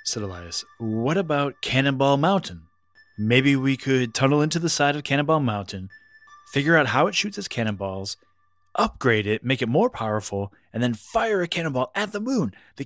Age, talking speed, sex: 30-49, 175 wpm, male